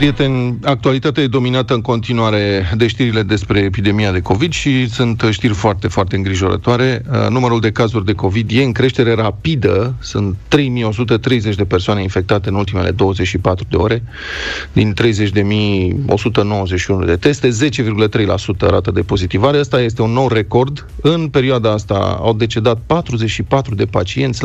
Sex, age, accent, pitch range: male, 30-49, native, 105-125 Hz